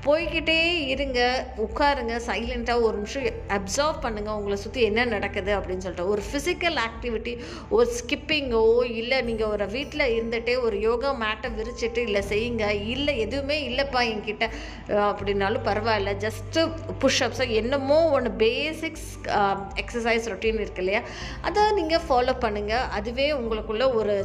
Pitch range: 215-290 Hz